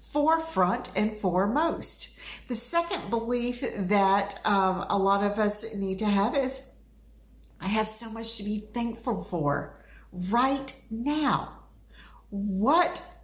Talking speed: 120 wpm